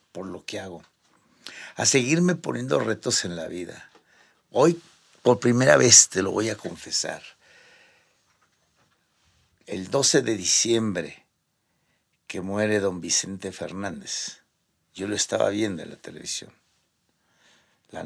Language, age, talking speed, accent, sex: Spanish, 60-79, 125 wpm, Mexican, male